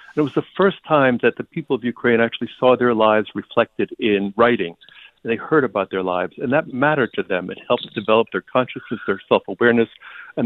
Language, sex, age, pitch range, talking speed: English, male, 60-79, 110-130 Hz, 200 wpm